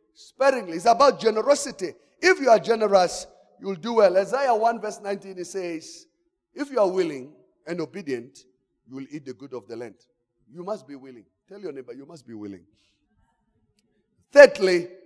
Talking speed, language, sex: 175 wpm, English, male